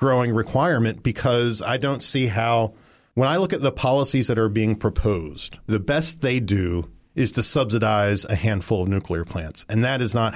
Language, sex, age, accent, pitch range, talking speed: English, male, 40-59, American, 110-140 Hz, 190 wpm